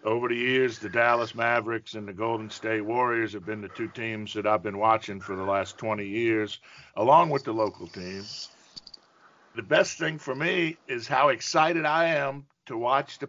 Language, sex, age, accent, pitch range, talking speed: English, male, 50-69, American, 115-145 Hz, 195 wpm